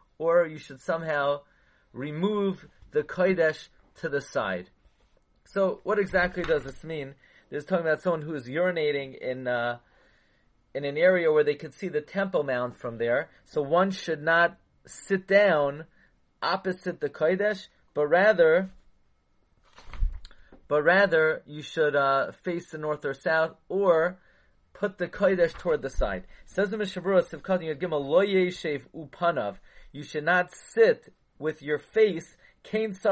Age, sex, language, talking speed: 30-49, male, English, 135 wpm